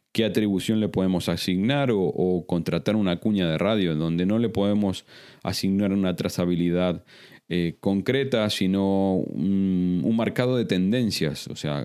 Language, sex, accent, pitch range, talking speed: Spanish, male, Argentinian, 90-115 Hz, 145 wpm